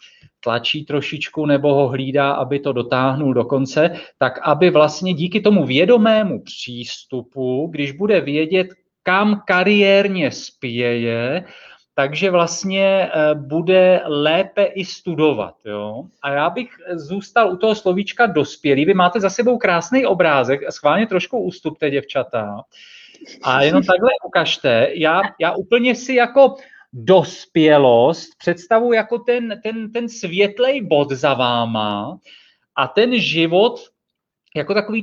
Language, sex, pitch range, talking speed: Czech, male, 140-210 Hz, 125 wpm